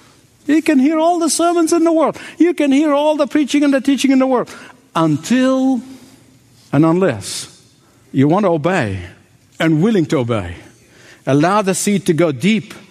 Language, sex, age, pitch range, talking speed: English, male, 60-79, 155-250 Hz, 175 wpm